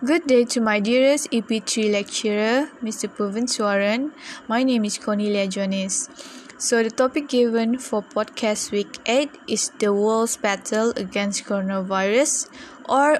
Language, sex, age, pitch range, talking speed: English, female, 10-29, 210-260 Hz, 135 wpm